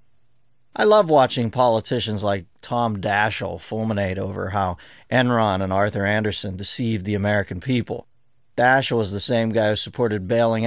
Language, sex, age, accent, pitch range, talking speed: English, male, 50-69, American, 105-125 Hz, 145 wpm